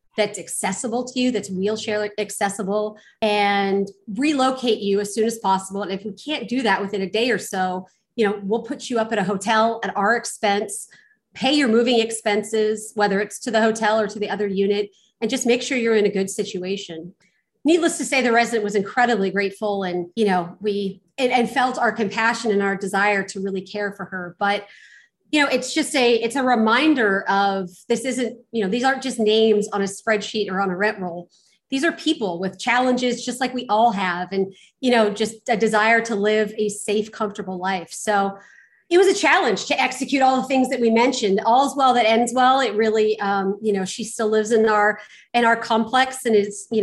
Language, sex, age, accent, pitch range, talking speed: English, female, 30-49, American, 200-240 Hz, 215 wpm